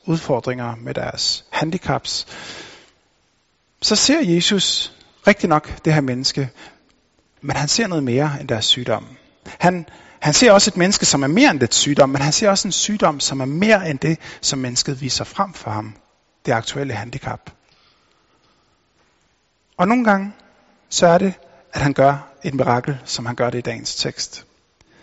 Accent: native